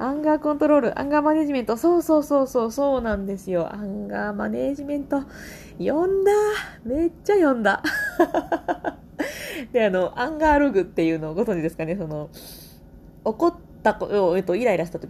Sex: female